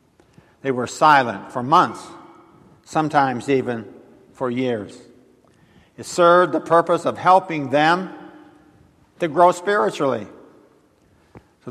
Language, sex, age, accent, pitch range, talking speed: English, male, 50-69, American, 125-160 Hz, 100 wpm